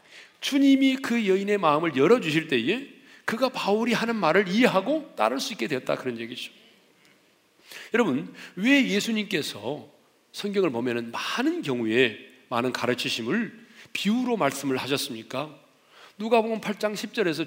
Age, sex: 40-59, male